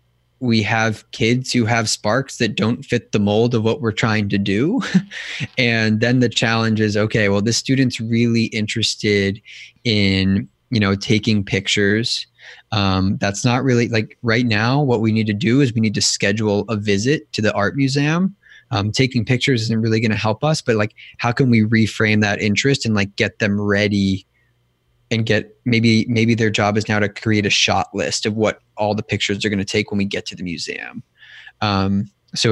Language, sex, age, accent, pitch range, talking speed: English, male, 20-39, American, 100-120 Hz, 200 wpm